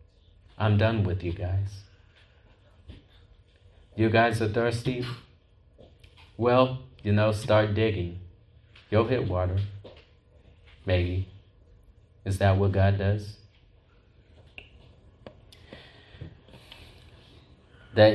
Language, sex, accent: English, male, American